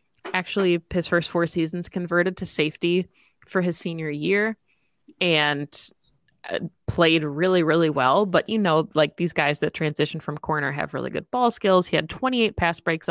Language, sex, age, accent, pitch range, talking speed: English, female, 20-39, American, 155-190 Hz, 170 wpm